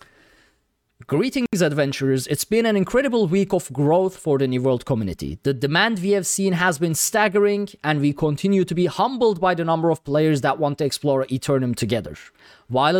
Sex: male